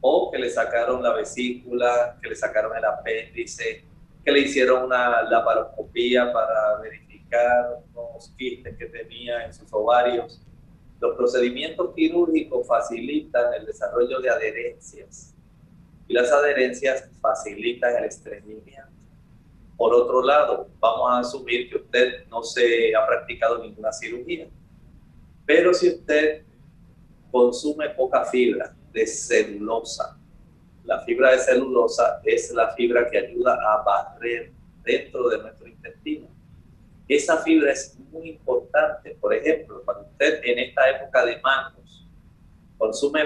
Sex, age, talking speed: male, 30-49, 125 wpm